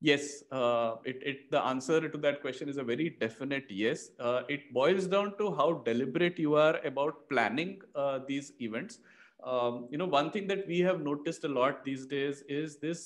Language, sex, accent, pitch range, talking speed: English, male, Indian, 130-185 Hz, 190 wpm